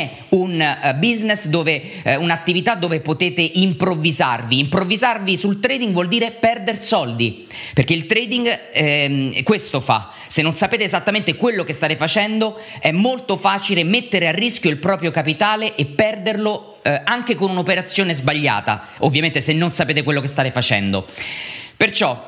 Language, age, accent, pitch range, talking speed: Italian, 30-49, native, 155-215 Hz, 145 wpm